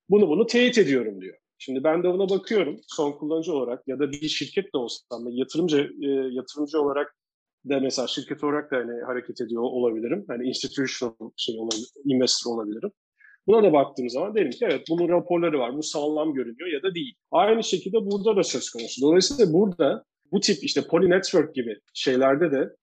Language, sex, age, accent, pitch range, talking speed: Turkish, male, 40-59, native, 135-185 Hz, 185 wpm